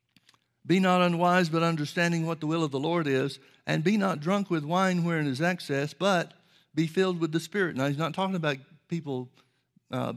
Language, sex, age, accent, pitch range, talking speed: English, male, 60-79, American, 140-175 Hz, 200 wpm